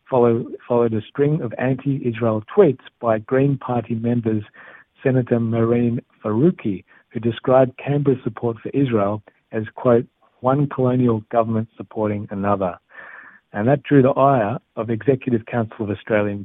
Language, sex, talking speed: Hebrew, male, 135 wpm